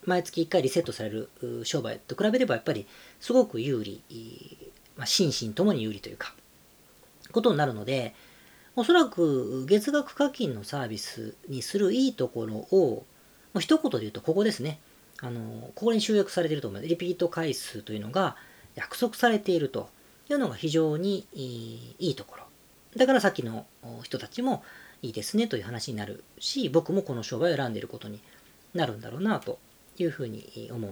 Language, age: Japanese, 40-59